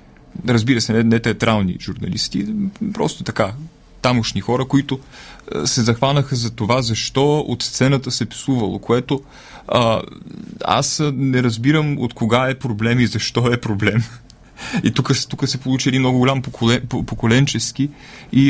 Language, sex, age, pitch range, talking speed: Bulgarian, male, 30-49, 115-140 Hz, 140 wpm